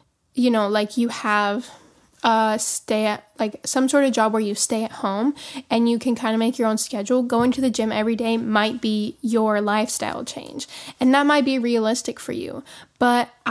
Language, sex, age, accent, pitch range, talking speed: English, female, 10-29, American, 225-260 Hz, 205 wpm